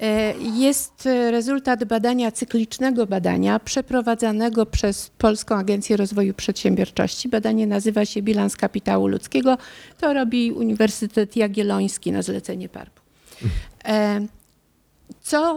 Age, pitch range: 50-69, 210-250 Hz